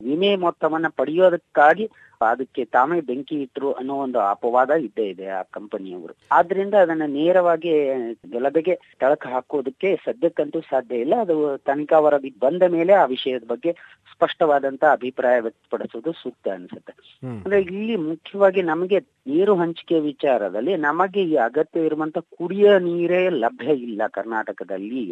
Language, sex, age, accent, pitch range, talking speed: Kannada, female, 30-49, native, 135-175 Hz, 120 wpm